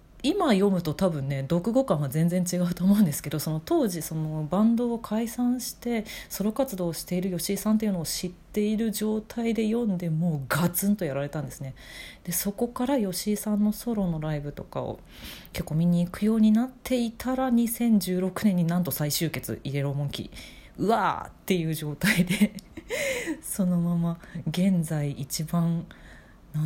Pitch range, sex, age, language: 145-200 Hz, female, 30-49, Japanese